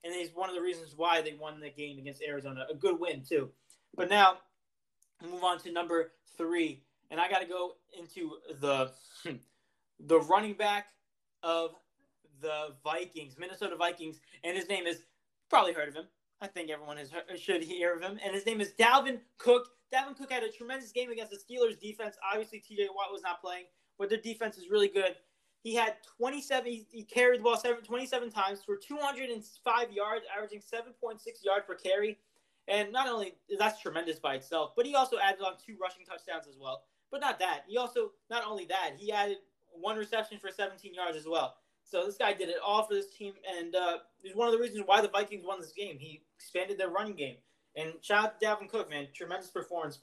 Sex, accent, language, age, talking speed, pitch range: male, American, English, 20-39, 205 wpm, 170-220 Hz